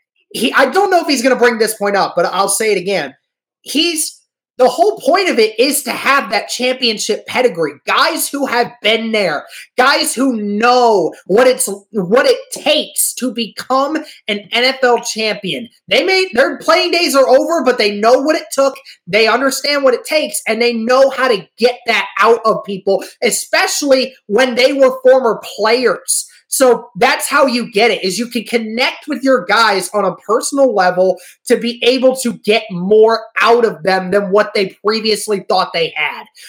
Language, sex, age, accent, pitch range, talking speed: English, male, 30-49, American, 205-275 Hz, 185 wpm